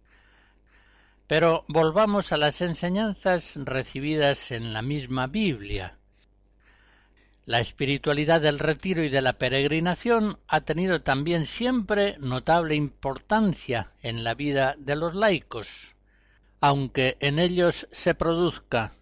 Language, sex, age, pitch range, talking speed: Spanish, male, 60-79, 115-175 Hz, 110 wpm